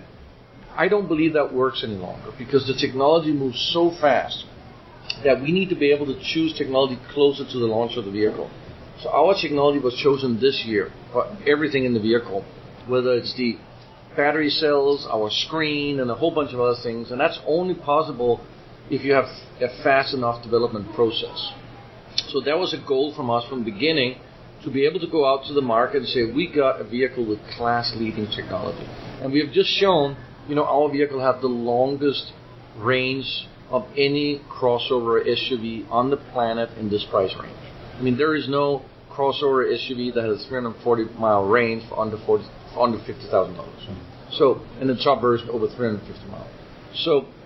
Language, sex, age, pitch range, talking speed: English, male, 50-69, 120-145 Hz, 185 wpm